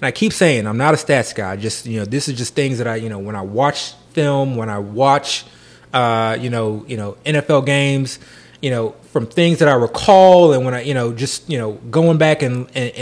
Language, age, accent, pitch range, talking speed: English, 30-49, American, 115-170 Hz, 250 wpm